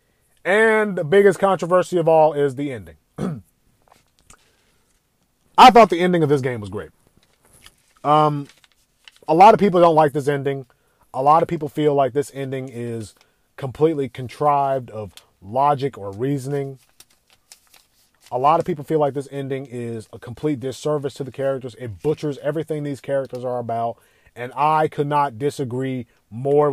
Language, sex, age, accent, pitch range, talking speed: English, male, 30-49, American, 125-155 Hz, 155 wpm